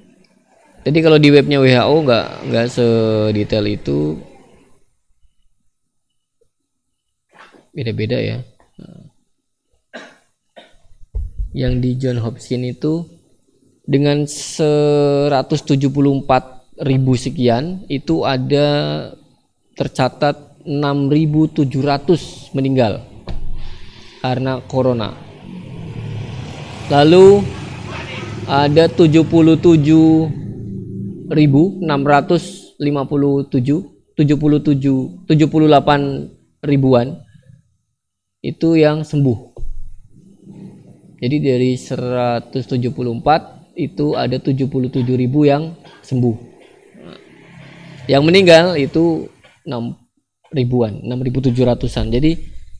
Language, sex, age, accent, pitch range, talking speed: Indonesian, male, 20-39, native, 120-150 Hz, 60 wpm